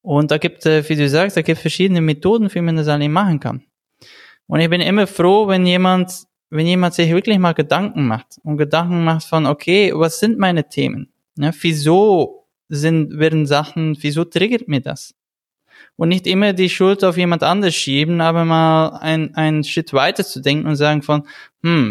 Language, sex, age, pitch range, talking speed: German, male, 20-39, 155-185 Hz, 185 wpm